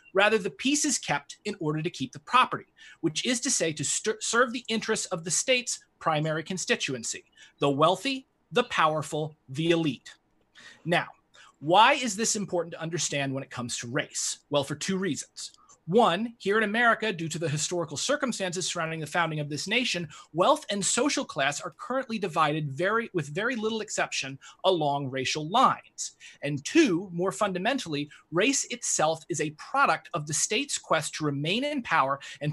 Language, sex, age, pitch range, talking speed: English, male, 30-49, 150-230 Hz, 175 wpm